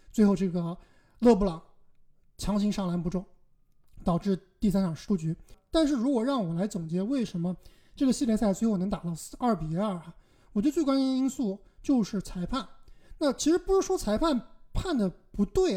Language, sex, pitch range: Chinese, male, 185-260 Hz